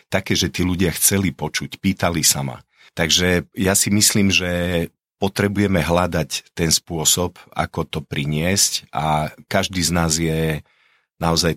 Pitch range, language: 80-90 Hz, Slovak